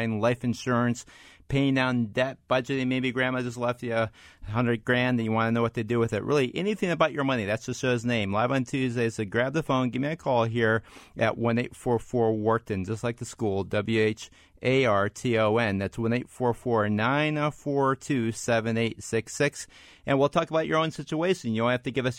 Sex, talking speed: male, 195 wpm